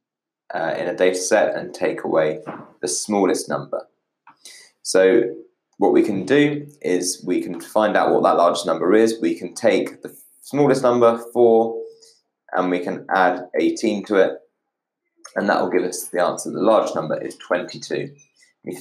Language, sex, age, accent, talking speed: English, male, 20-39, British, 170 wpm